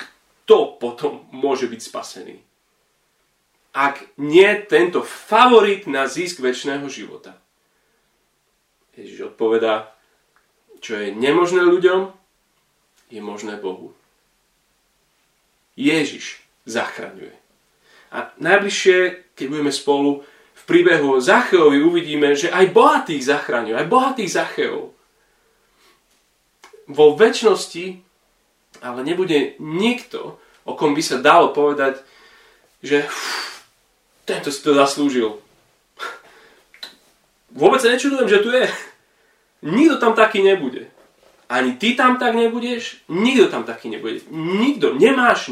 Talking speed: 105 wpm